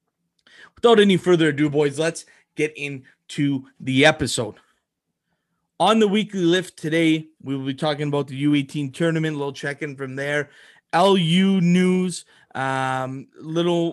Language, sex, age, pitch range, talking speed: English, male, 20-39, 125-155 Hz, 140 wpm